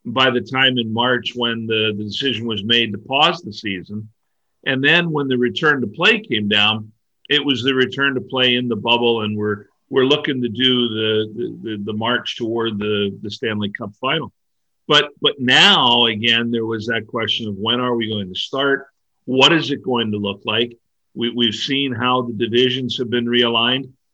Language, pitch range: English, 115-140 Hz